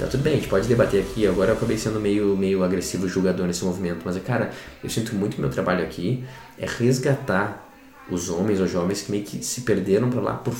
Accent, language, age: Brazilian, Portuguese, 20-39